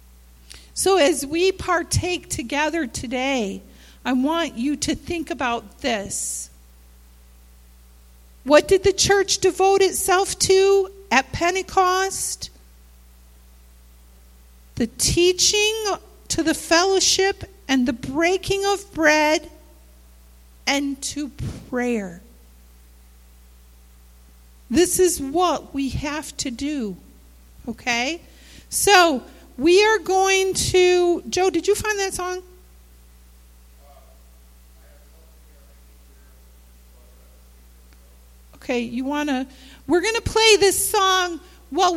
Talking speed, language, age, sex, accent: 95 wpm, English, 50-69, female, American